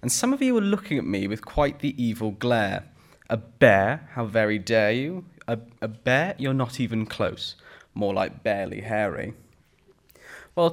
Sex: male